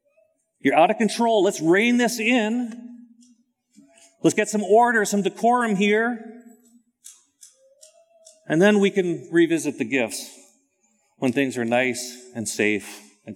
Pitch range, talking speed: 165-235 Hz, 130 wpm